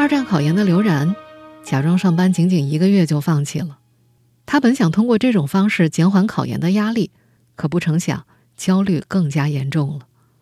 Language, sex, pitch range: Chinese, female, 140-215 Hz